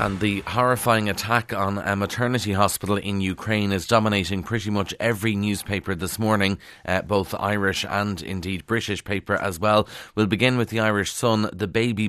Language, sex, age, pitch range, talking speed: English, male, 30-49, 95-105 Hz, 175 wpm